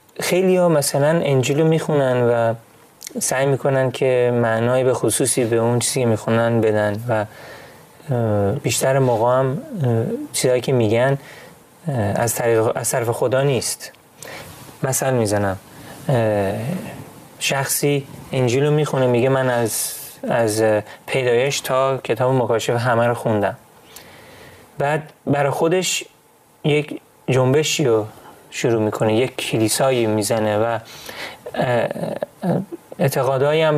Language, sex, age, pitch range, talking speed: Persian, male, 30-49, 115-145 Hz, 100 wpm